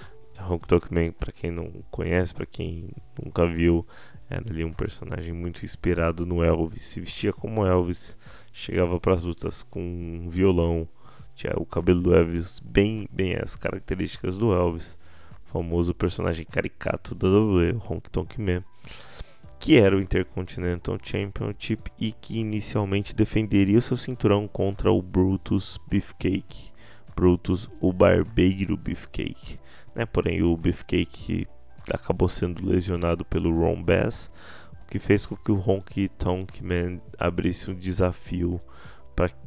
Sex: male